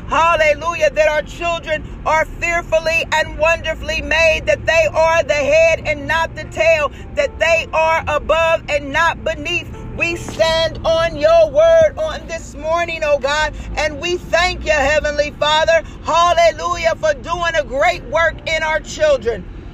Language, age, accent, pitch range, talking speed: English, 40-59, American, 295-335 Hz, 150 wpm